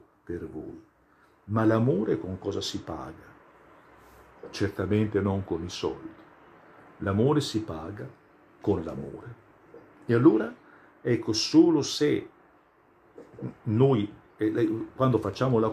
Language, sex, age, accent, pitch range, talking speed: Italian, male, 50-69, native, 105-135 Hz, 105 wpm